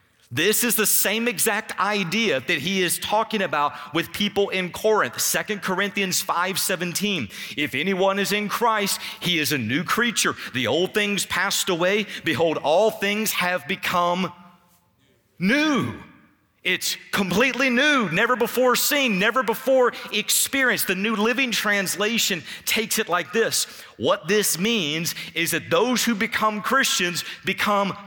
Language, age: English, 40-59